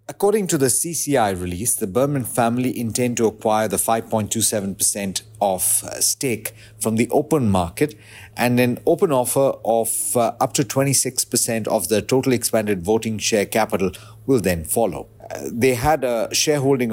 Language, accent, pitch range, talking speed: English, Indian, 105-130 Hz, 150 wpm